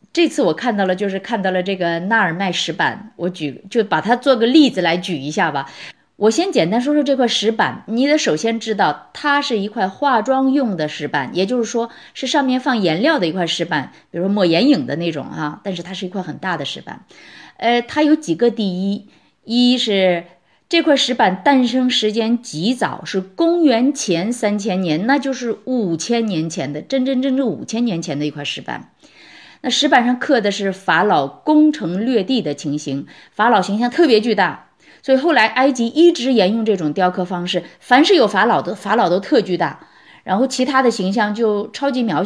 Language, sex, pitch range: Chinese, female, 180-255 Hz